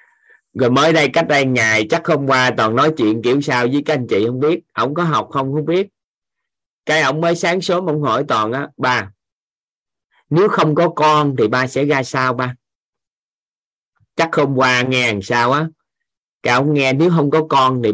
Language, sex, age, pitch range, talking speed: Vietnamese, male, 20-39, 115-150 Hz, 205 wpm